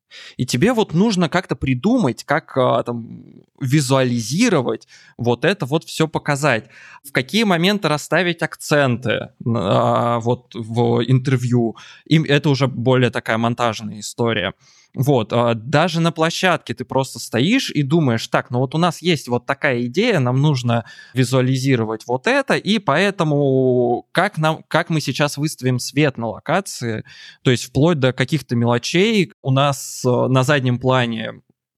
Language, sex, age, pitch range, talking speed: Russian, male, 20-39, 125-160 Hz, 135 wpm